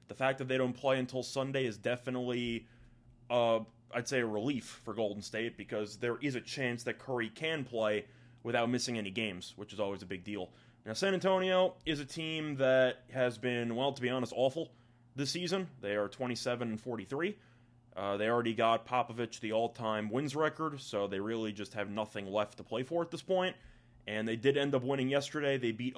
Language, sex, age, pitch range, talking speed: English, male, 20-39, 115-135 Hz, 205 wpm